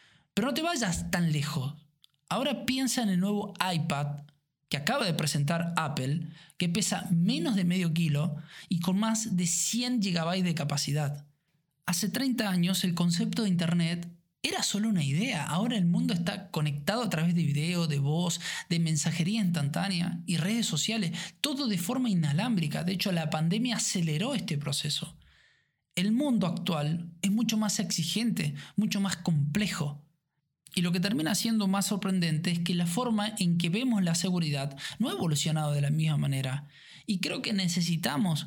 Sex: male